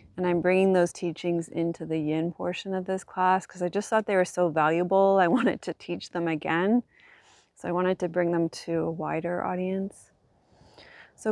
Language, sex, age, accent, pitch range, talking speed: English, female, 30-49, American, 165-190 Hz, 195 wpm